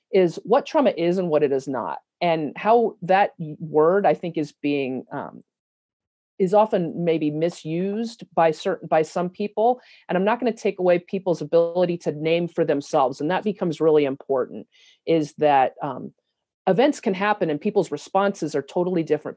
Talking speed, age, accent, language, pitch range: 175 wpm, 40-59, American, English, 160-200 Hz